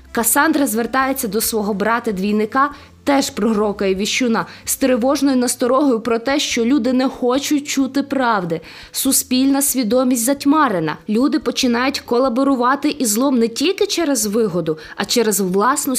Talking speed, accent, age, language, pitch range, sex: 130 wpm, native, 20-39, Ukrainian, 210-280 Hz, female